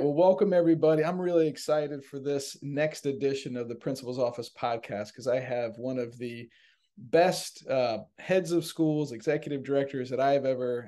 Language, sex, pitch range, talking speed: English, male, 120-150 Hz, 170 wpm